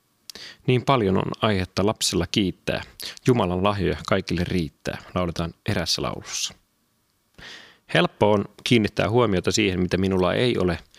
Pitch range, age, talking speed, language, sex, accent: 90-105 Hz, 30-49, 120 wpm, Finnish, male, native